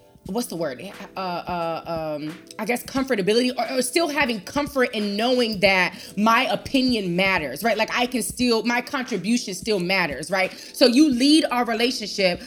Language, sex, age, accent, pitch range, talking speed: English, female, 20-39, American, 210-305 Hz, 170 wpm